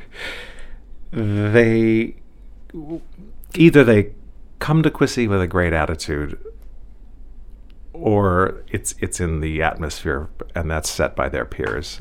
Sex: male